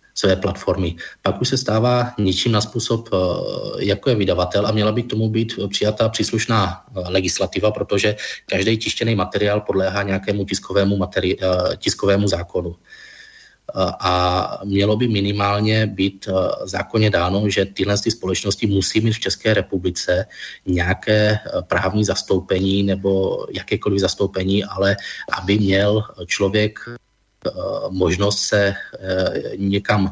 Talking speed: 120 wpm